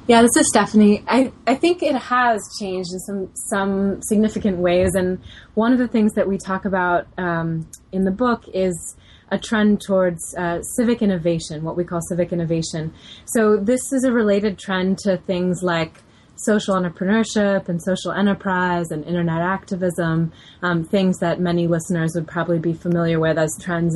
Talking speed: 175 wpm